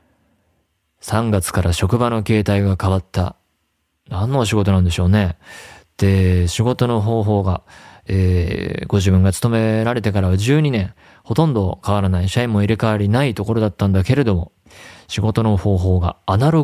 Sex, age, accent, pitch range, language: male, 20-39, native, 95-110 Hz, Japanese